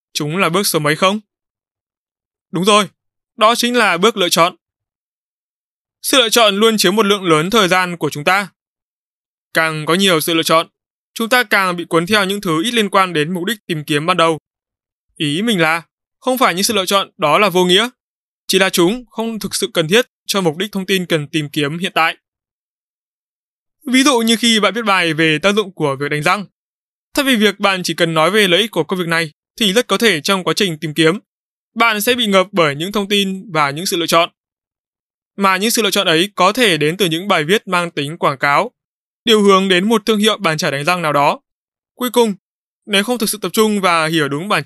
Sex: male